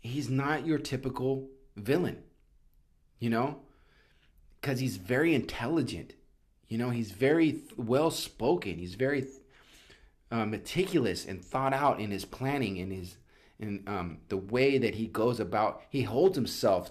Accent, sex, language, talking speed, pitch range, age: American, male, English, 130 wpm, 90-135 Hz, 30-49